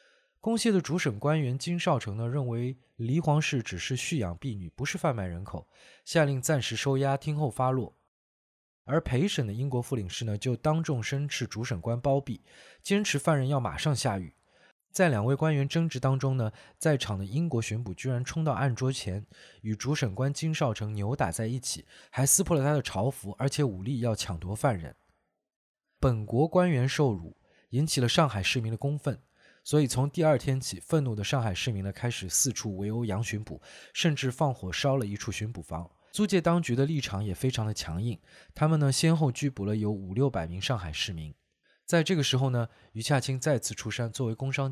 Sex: male